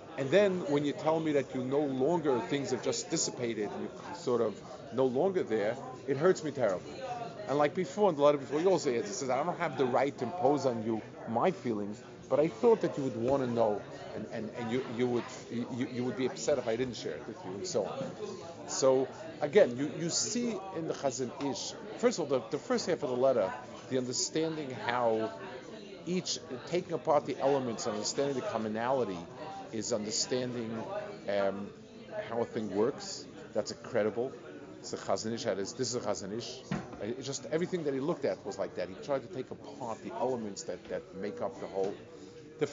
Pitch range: 120-155 Hz